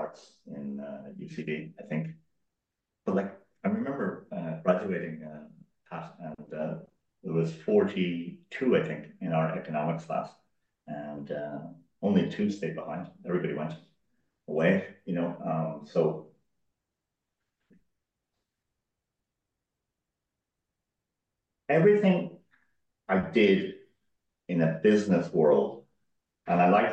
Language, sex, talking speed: English, male, 100 wpm